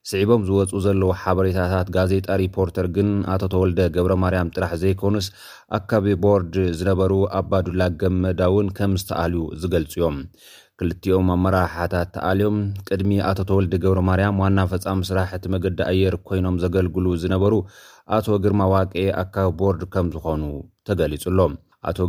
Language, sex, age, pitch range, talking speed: Amharic, male, 30-49, 90-100 Hz, 115 wpm